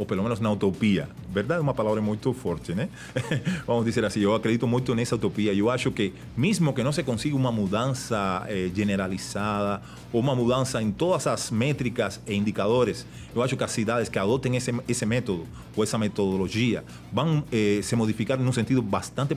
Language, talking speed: Portuguese, 190 wpm